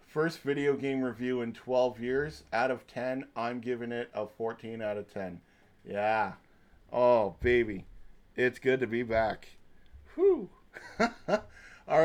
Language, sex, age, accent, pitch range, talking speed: English, male, 40-59, American, 105-130 Hz, 140 wpm